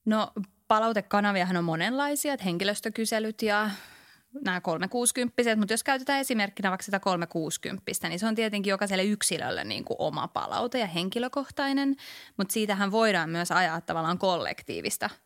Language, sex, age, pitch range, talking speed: Finnish, female, 20-39, 170-215 Hz, 140 wpm